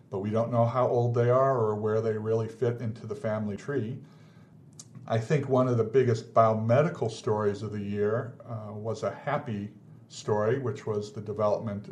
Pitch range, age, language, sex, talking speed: 105-125 Hz, 50-69, English, male, 185 wpm